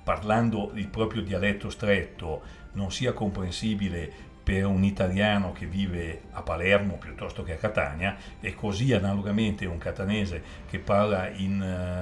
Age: 60-79